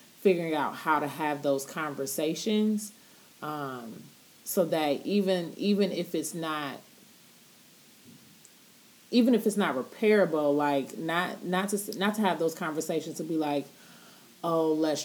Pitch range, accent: 145-195 Hz, American